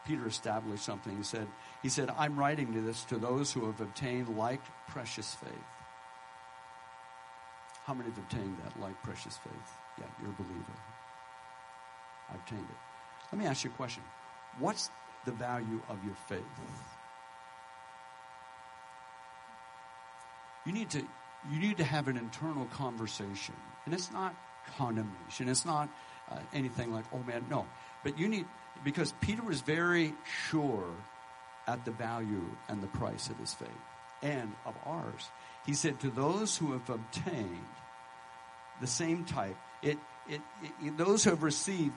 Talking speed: 150 wpm